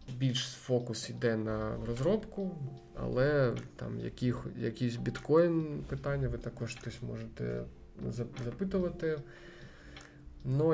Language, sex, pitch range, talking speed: Ukrainian, male, 115-135 Hz, 90 wpm